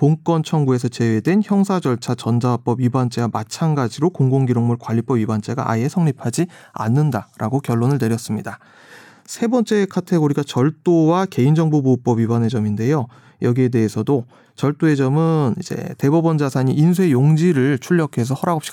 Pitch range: 120-155 Hz